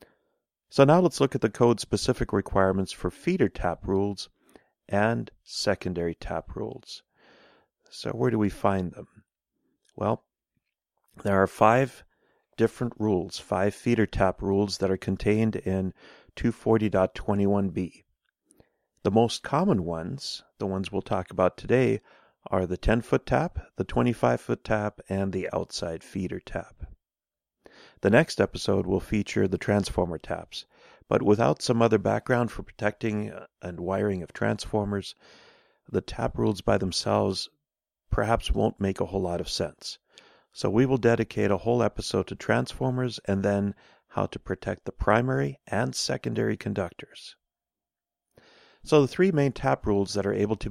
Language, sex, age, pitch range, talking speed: English, male, 40-59, 95-115 Hz, 140 wpm